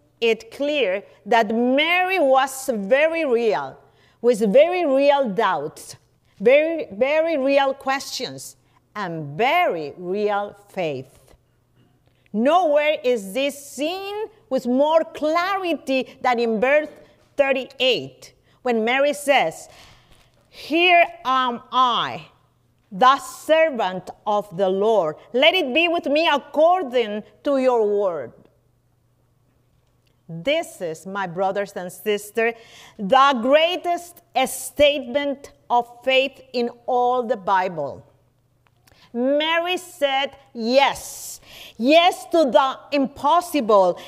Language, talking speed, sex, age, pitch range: English, 100 wpm, female, 50-69, 200-305 Hz